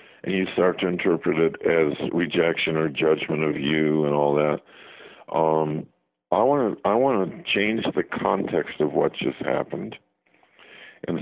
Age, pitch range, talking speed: 50-69, 80-95 Hz, 150 wpm